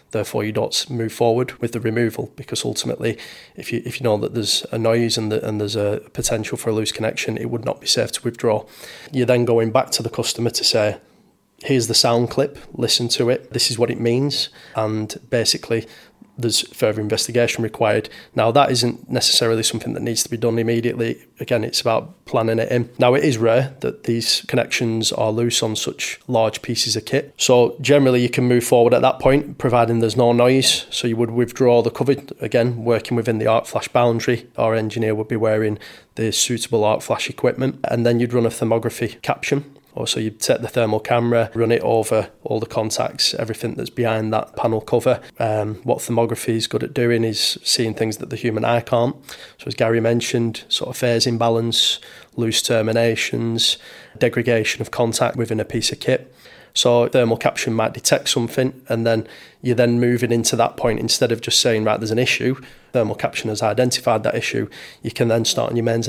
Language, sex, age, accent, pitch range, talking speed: English, male, 20-39, British, 115-120 Hz, 200 wpm